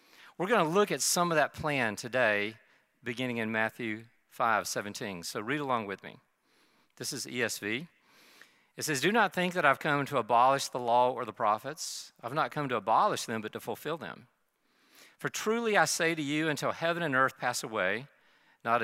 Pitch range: 110-150 Hz